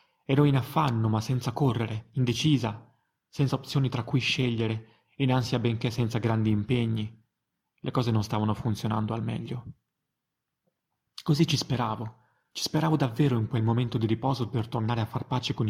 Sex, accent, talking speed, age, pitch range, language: male, native, 160 wpm, 30-49, 115-135 Hz, Italian